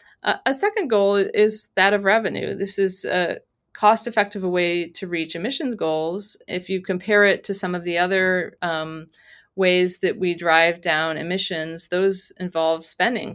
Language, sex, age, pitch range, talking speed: English, female, 30-49, 160-210 Hz, 155 wpm